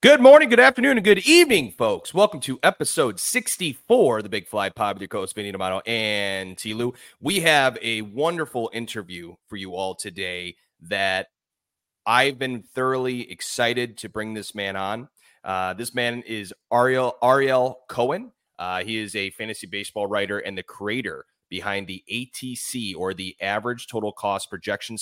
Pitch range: 95-120 Hz